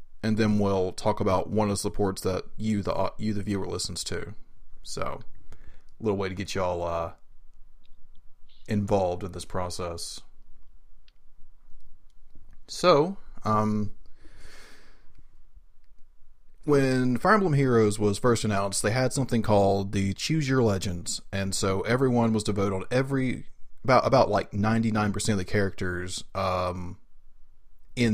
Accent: American